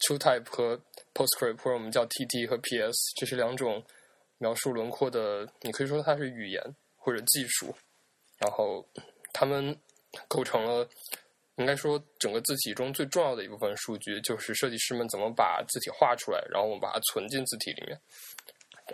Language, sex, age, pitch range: Chinese, male, 10-29, 115-145 Hz